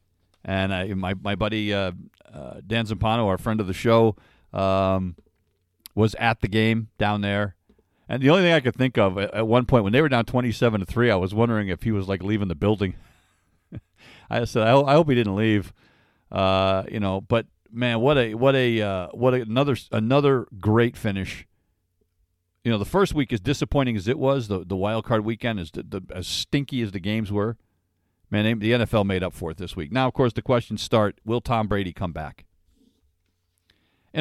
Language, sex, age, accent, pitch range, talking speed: English, male, 50-69, American, 90-120 Hz, 210 wpm